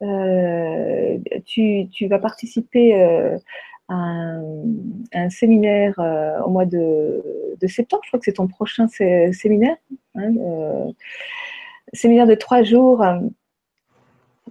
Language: French